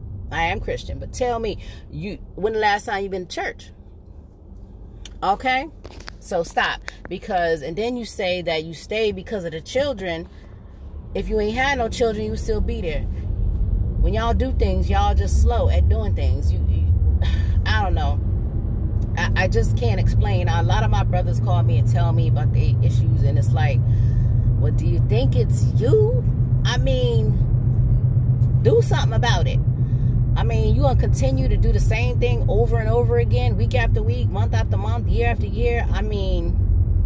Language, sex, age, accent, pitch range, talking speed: English, female, 30-49, American, 90-125 Hz, 185 wpm